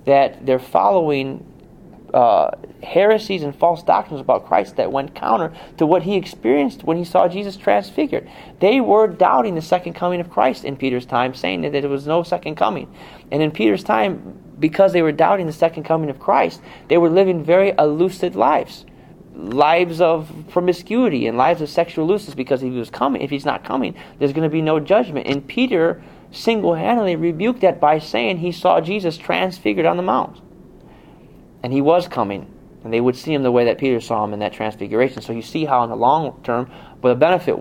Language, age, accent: English, 30-49, American